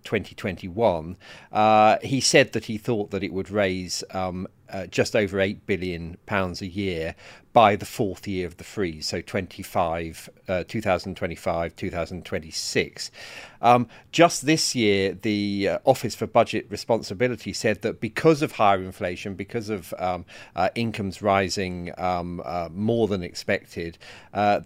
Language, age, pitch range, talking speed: English, 40-59, 95-115 Hz, 165 wpm